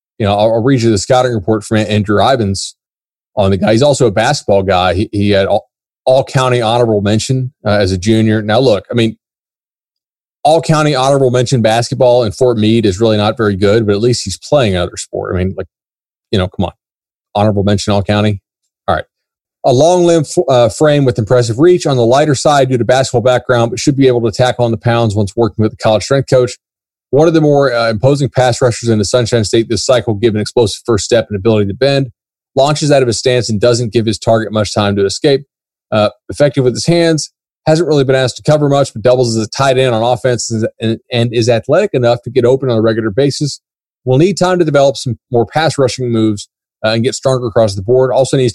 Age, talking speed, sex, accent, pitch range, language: 30-49, 225 wpm, male, American, 110-130 Hz, English